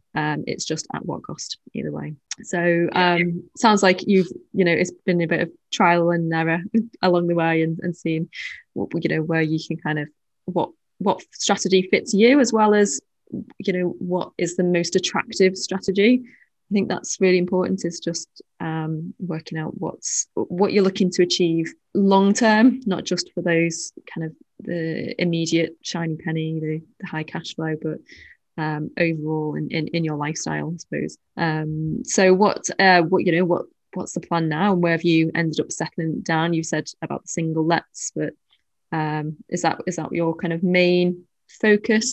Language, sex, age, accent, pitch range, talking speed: English, female, 20-39, British, 165-190 Hz, 190 wpm